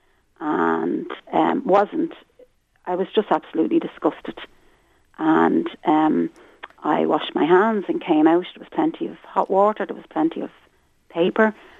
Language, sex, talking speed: English, female, 140 wpm